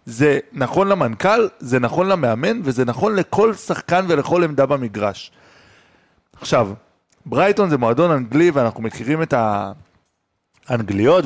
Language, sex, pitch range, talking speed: Hebrew, male, 115-170 Hz, 115 wpm